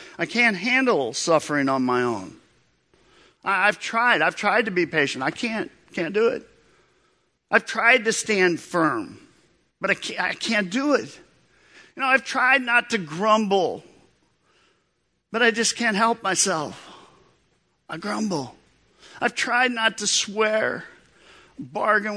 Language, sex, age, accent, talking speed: English, male, 50-69, American, 145 wpm